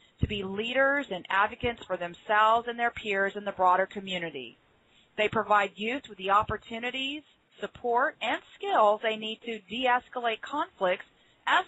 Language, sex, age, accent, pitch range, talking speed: English, female, 40-59, American, 185-235 Hz, 150 wpm